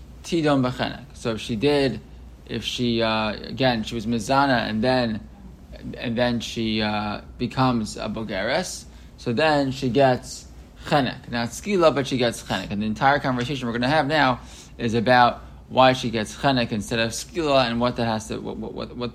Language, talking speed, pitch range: English, 180 wpm, 115-140 Hz